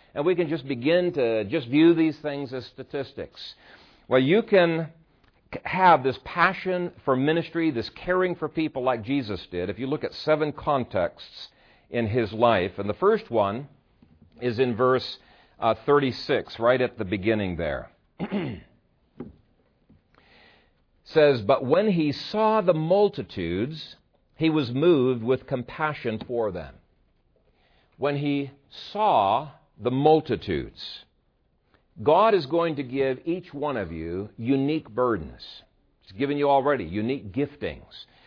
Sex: male